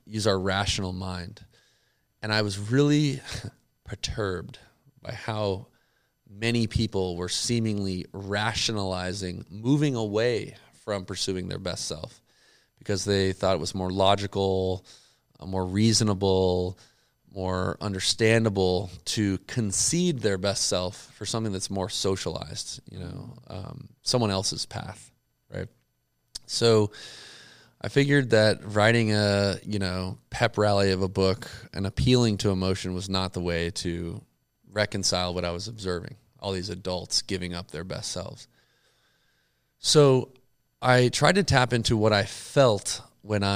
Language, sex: English, male